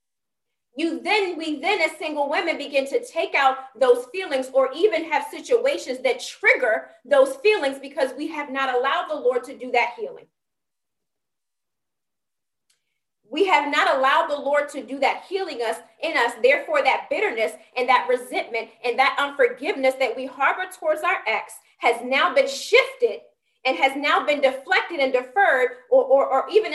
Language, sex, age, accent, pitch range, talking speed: English, female, 30-49, American, 260-330 Hz, 170 wpm